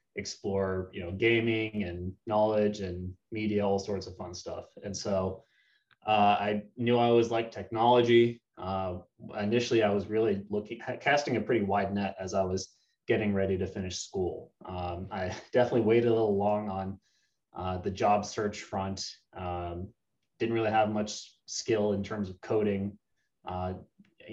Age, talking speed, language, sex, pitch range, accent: 20-39, 160 wpm, English, male, 95-115 Hz, American